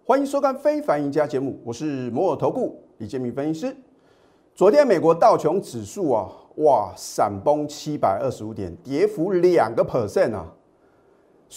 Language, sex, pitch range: Chinese, male, 135-195 Hz